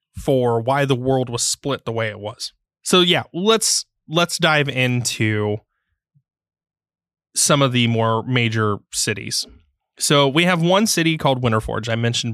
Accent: American